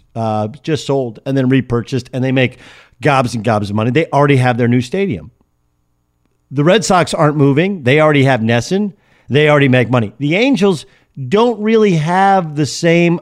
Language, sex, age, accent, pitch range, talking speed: English, male, 50-69, American, 120-180 Hz, 180 wpm